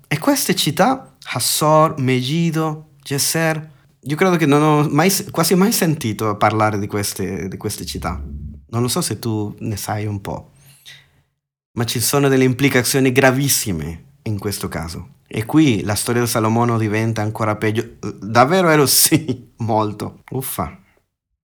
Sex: male